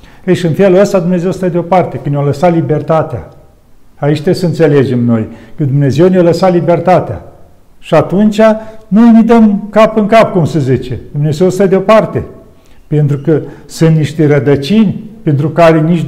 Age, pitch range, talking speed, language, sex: 50-69, 140-180 Hz, 165 wpm, Romanian, male